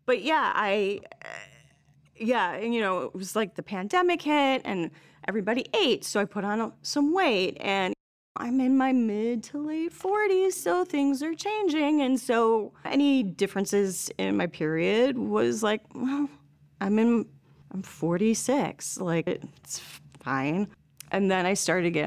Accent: American